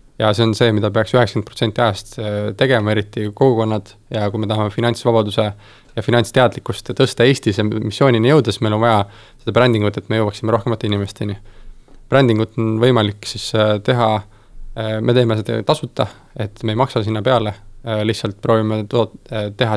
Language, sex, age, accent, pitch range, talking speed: English, male, 20-39, Finnish, 105-120 Hz, 150 wpm